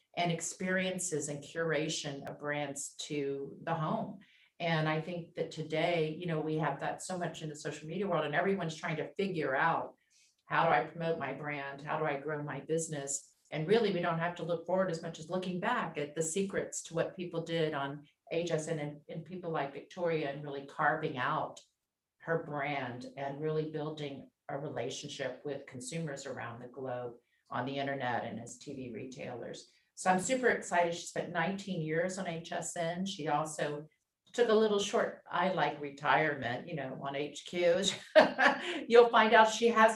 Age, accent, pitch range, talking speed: 50-69, American, 145-180 Hz, 185 wpm